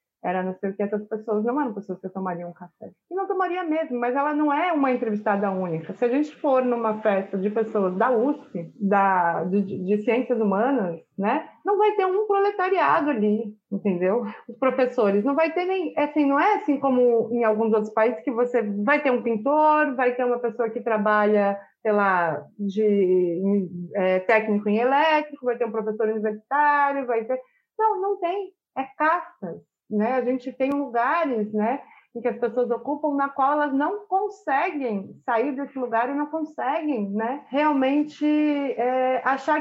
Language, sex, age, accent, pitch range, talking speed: Portuguese, female, 30-49, Brazilian, 205-285 Hz, 180 wpm